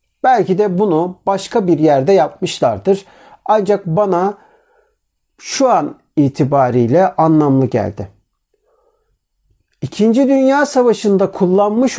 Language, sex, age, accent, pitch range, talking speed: Turkish, male, 50-69, native, 155-240 Hz, 90 wpm